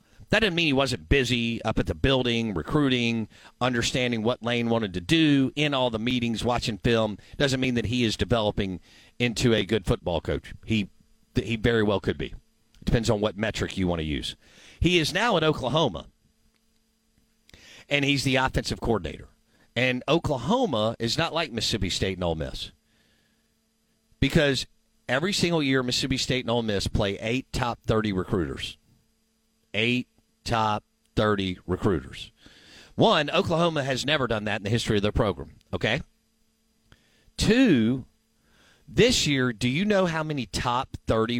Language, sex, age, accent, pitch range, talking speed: English, male, 50-69, American, 100-130 Hz, 160 wpm